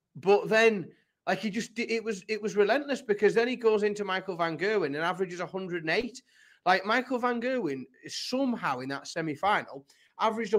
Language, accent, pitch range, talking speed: English, British, 165-225 Hz, 170 wpm